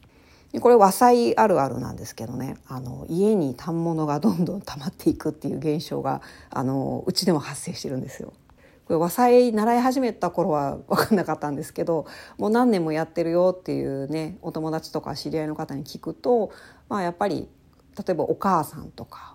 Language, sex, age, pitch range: Japanese, female, 40-59, 150-220 Hz